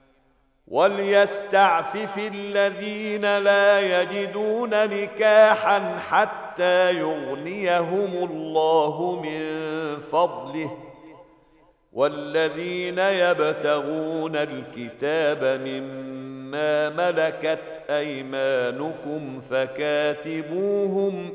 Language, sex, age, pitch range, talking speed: Arabic, male, 50-69, 150-195 Hz, 50 wpm